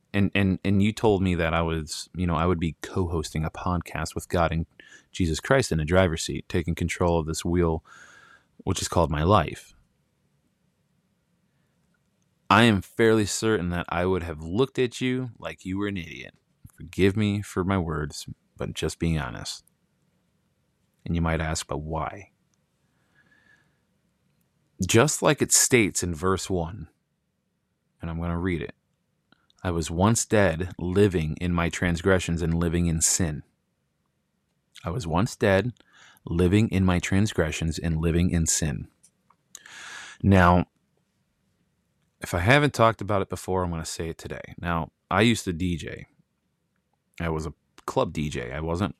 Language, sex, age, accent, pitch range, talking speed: English, male, 30-49, American, 85-95 Hz, 160 wpm